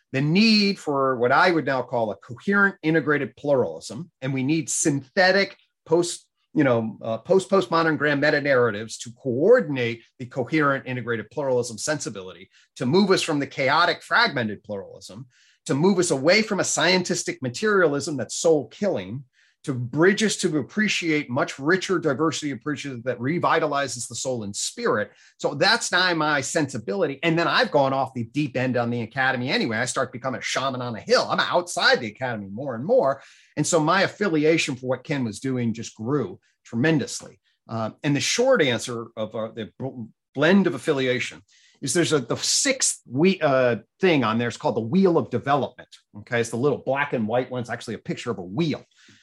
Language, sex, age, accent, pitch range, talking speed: English, male, 30-49, American, 120-165 Hz, 185 wpm